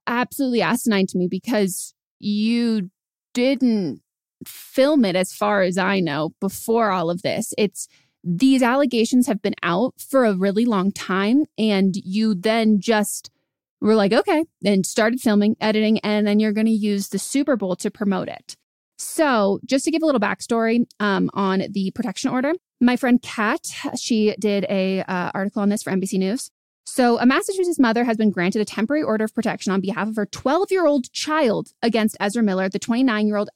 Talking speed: 180 wpm